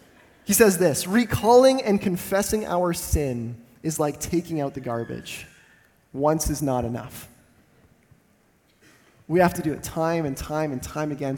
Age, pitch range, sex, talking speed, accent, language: 20-39, 130-175 Hz, male, 155 wpm, American, English